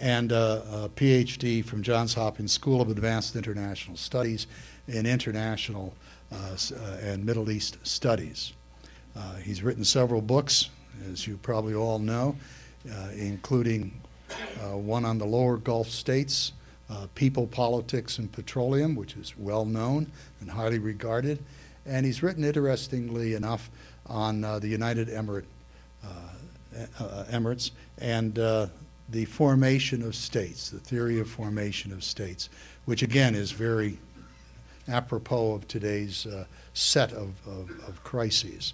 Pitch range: 100-120 Hz